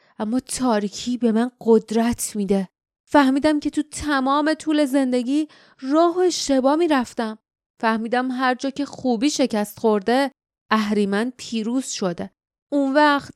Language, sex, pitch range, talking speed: Persian, female, 195-270 Hz, 120 wpm